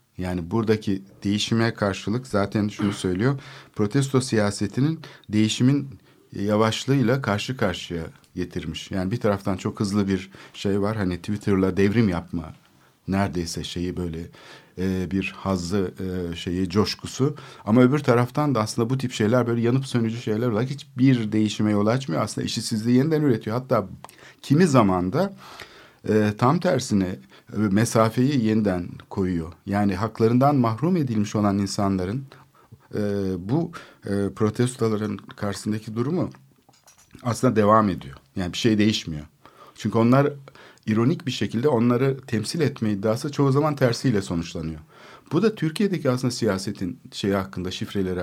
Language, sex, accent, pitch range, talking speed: Turkish, male, native, 95-125 Hz, 125 wpm